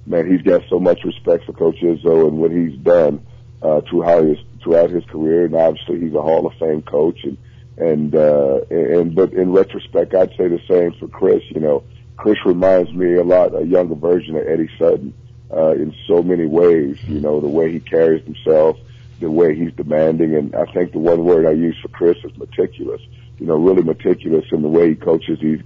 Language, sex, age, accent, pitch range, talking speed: English, male, 50-69, American, 80-120 Hz, 210 wpm